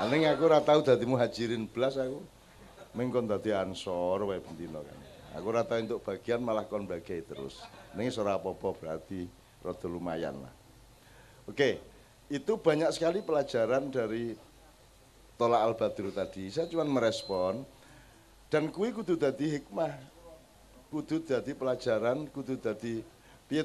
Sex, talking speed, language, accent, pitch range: male, 125 wpm, Indonesian, native, 120-165 Hz